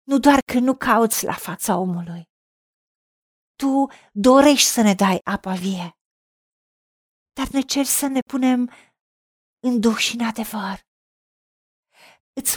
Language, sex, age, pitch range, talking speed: Romanian, female, 40-59, 225-275 Hz, 130 wpm